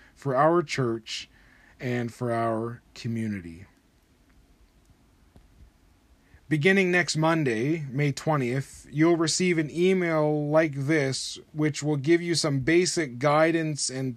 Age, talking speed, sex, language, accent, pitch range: 30-49, 110 wpm, male, English, American, 125-155 Hz